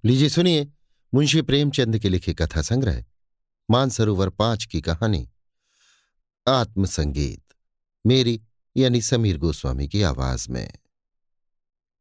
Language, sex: Hindi, male